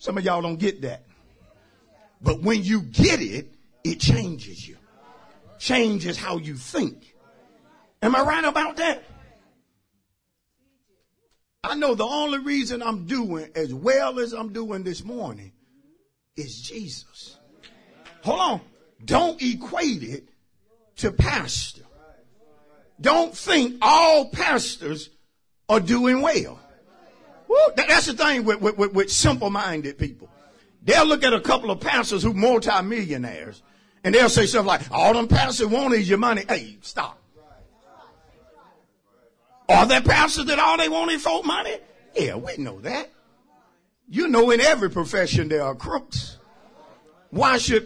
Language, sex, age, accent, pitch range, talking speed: English, male, 50-69, American, 185-275 Hz, 140 wpm